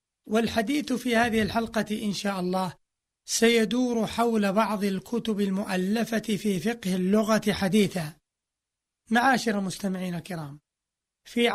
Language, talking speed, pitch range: Arabic, 105 wpm, 195-225 Hz